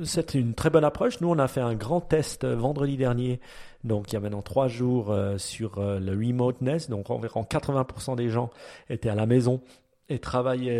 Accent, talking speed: French, 205 wpm